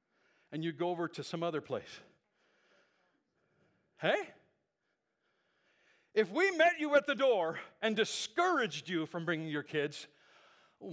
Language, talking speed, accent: English, 130 wpm, American